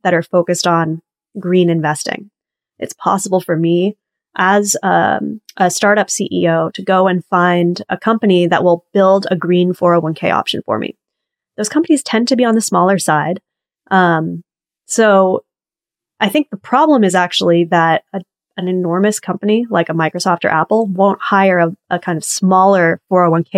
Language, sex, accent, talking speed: English, female, American, 165 wpm